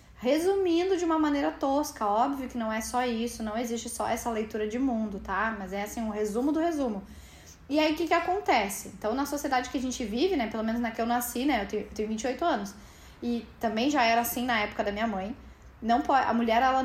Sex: female